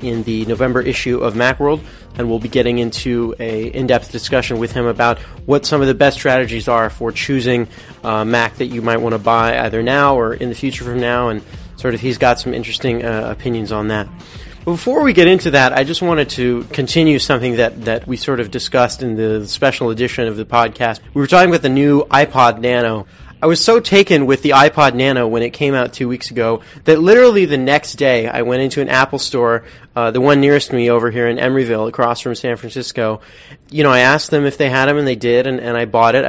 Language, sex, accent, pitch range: English, male, American, 120-140 Hz